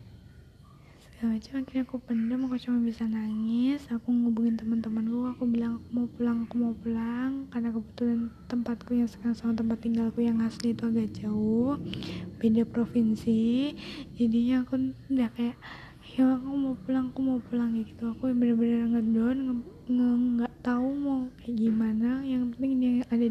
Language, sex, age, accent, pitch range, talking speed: Indonesian, female, 10-29, native, 225-250 Hz, 150 wpm